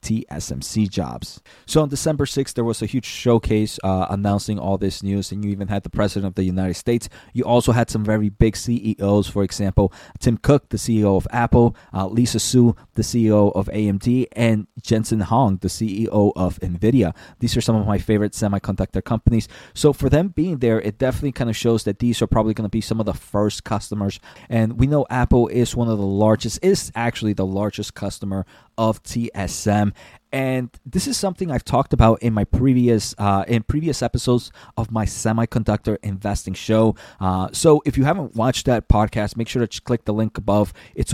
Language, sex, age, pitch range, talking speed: English, male, 20-39, 100-125 Hz, 200 wpm